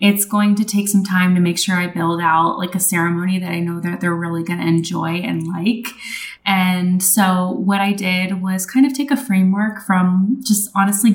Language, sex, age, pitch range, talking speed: English, female, 20-39, 185-230 Hz, 215 wpm